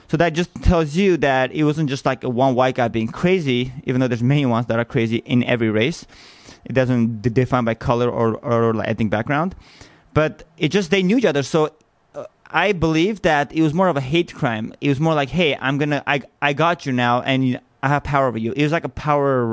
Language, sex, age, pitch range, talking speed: English, male, 20-39, 130-165 Hz, 235 wpm